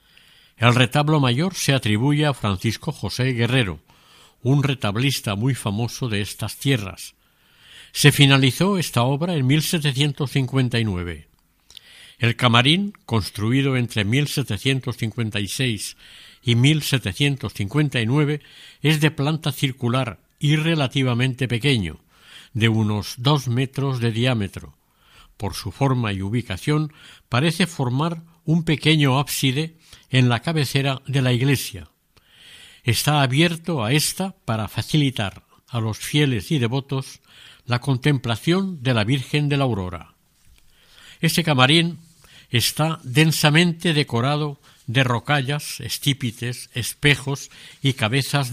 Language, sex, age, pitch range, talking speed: Spanish, male, 60-79, 120-150 Hz, 110 wpm